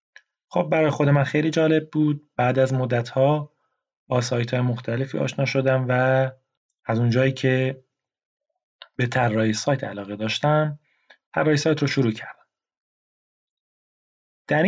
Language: Persian